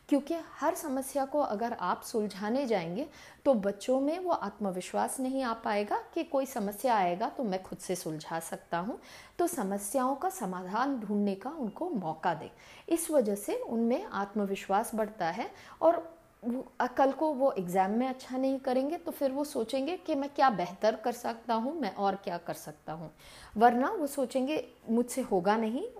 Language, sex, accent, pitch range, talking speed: Hindi, female, native, 200-280 Hz, 175 wpm